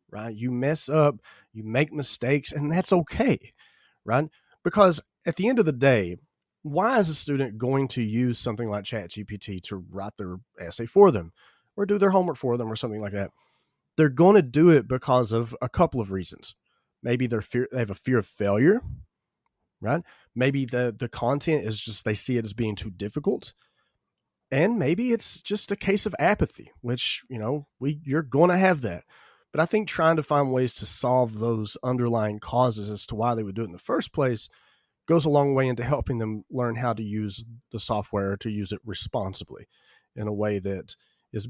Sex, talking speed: male, 205 wpm